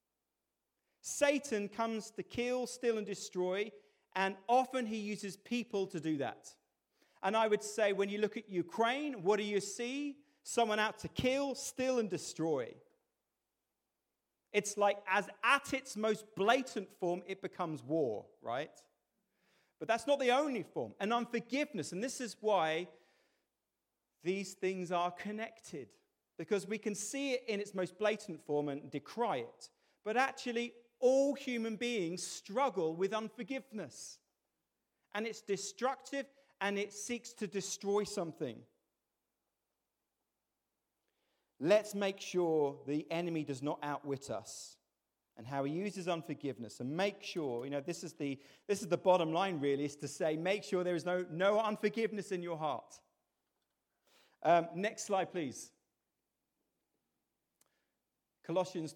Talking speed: 140 wpm